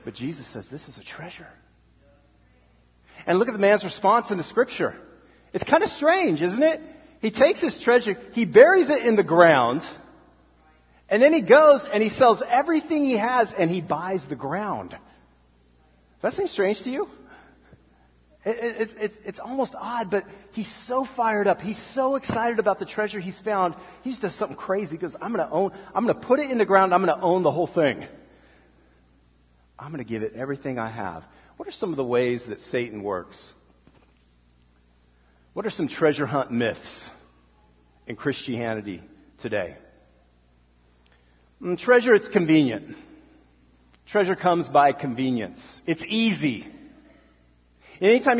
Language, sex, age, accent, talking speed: English, male, 40-59, American, 165 wpm